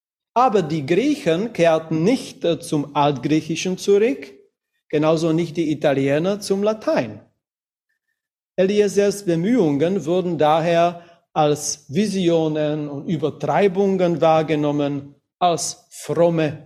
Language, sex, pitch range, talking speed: German, male, 150-200 Hz, 90 wpm